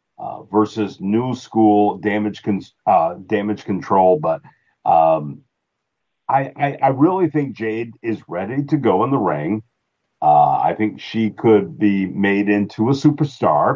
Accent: American